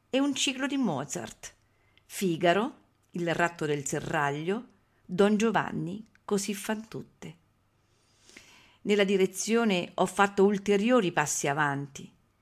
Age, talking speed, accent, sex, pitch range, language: 50-69, 105 wpm, Italian, female, 150-215 Hz, English